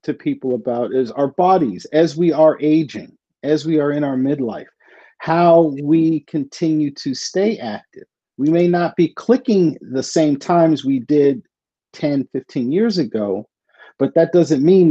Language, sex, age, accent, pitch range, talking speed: English, male, 40-59, American, 130-175 Hz, 160 wpm